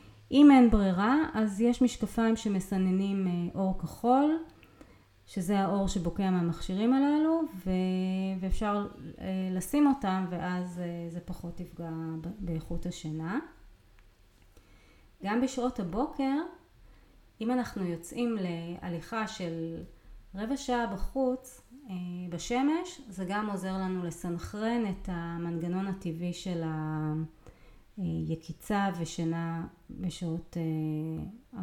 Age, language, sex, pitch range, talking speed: 30-49, Hebrew, female, 170-230 Hz, 95 wpm